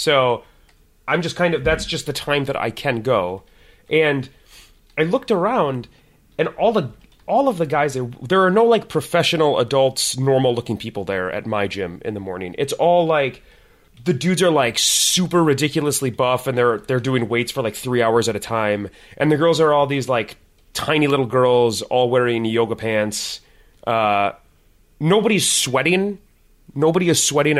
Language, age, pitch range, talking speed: English, 30-49, 120-170 Hz, 175 wpm